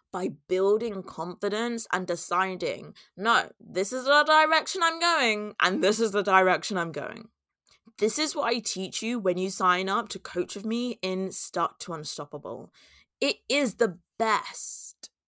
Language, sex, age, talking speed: English, female, 20-39, 160 wpm